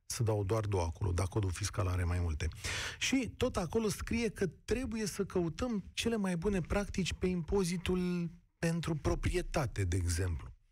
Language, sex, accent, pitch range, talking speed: Romanian, male, native, 110-185 Hz, 160 wpm